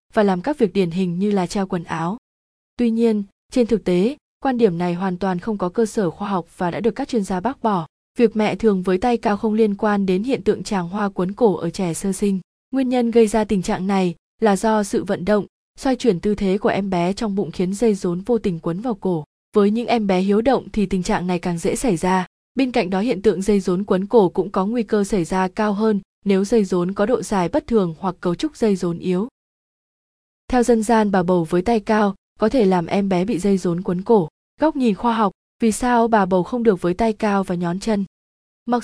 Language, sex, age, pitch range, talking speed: Vietnamese, female, 20-39, 185-225 Hz, 255 wpm